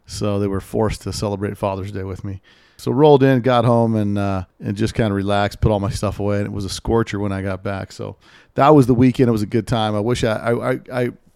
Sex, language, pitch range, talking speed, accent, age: male, English, 100-115 Hz, 270 wpm, American, 40-59